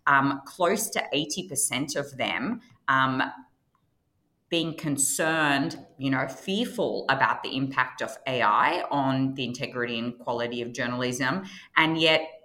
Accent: Australian